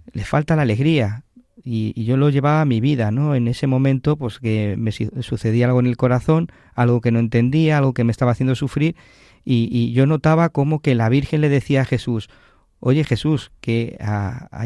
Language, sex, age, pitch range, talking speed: Spanish, male, 40-59, 115-140 Hz, 210 wpm